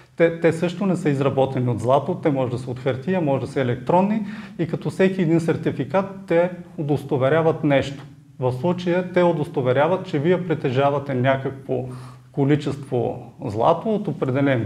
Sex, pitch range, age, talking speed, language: male, 135-175 Hz, 30-49, 155 wpm, Bulgarian